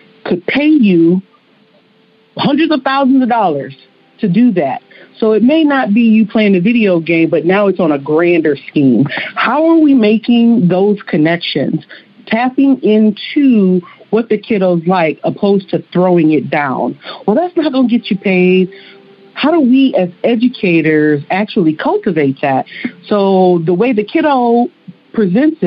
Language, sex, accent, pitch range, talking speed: English, female, American, 175-240 Hz, 155 wpm